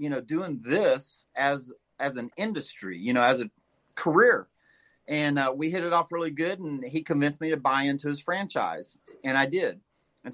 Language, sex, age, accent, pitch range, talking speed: English, male, 40-59, American, 140-200 Hz, 195 wpm